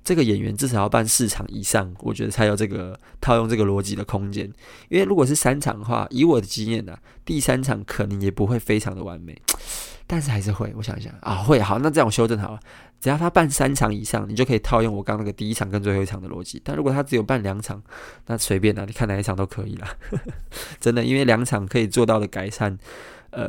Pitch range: 100-120 Hz